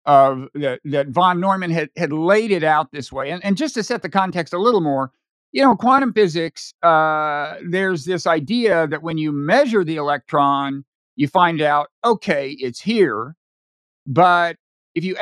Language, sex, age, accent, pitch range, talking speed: English, male, 50-69, American, 155-215 Hz, 180 wpm